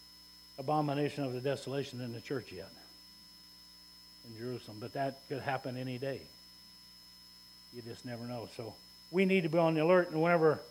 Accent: American